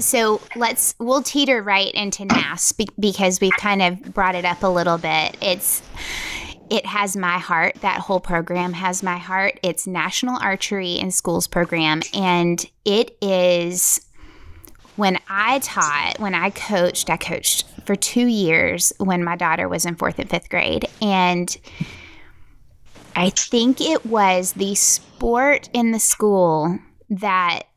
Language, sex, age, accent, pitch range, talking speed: English, female, 20-39, American, 175-215 Hz, 145 wpm